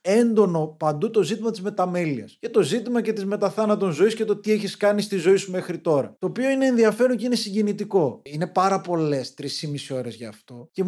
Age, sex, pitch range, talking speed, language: 20-39, male, 155-220 Hz, 220 wpm, Greek